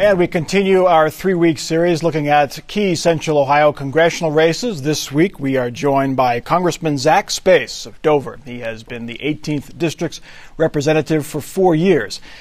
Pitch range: 125-165 Hz